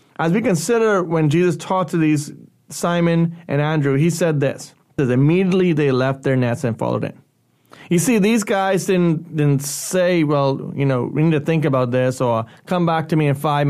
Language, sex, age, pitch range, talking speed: English, male, 30-49, 135-165 Hz, 200 wpm